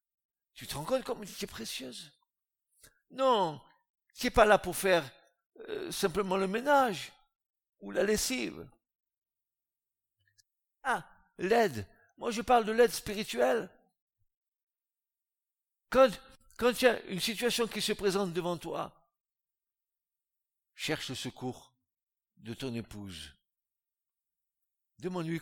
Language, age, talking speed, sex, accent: French, 60-79, 115 wpm, male, French